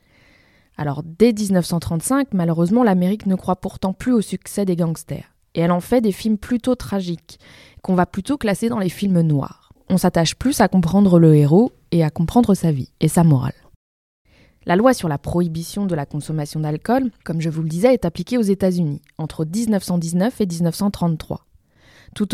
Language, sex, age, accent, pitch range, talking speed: French, female, 20-39, French, 160-205 Hz, 185 wpm